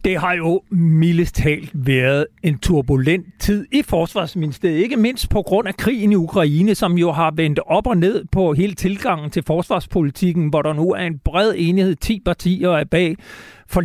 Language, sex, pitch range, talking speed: Danish, male, 160-200 Hz, 185 wpm